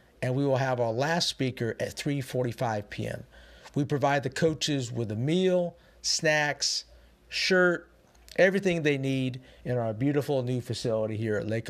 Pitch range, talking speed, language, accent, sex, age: 115-155 Hz, 155 wpm, English, American, male, 50-69